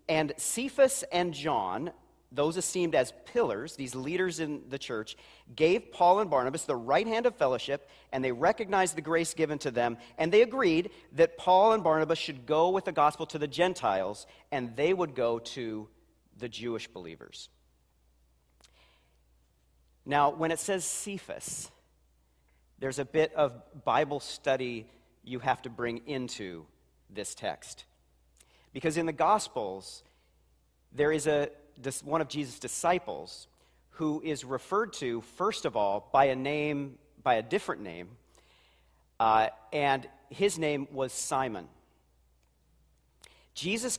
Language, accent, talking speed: English, American, 140 wpm